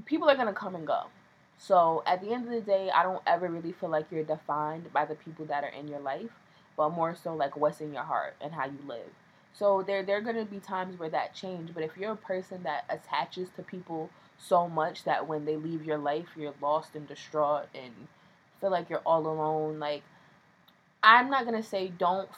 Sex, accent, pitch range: female, American, 155-195 Hz